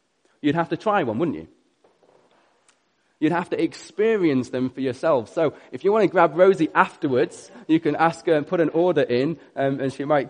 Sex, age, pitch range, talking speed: male, 20-39, 150-195 Hz, 205 wpm